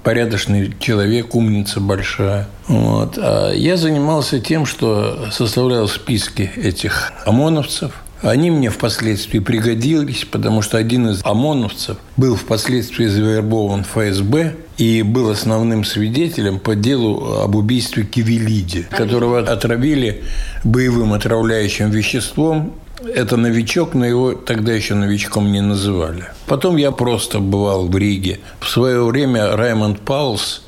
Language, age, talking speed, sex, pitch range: Russian, 60-79, 115 wpm, male, 105-125 Hz